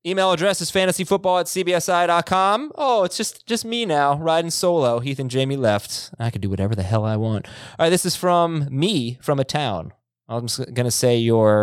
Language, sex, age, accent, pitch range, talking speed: English, male, 20-39, American, 120-155 Hz, 205 wpm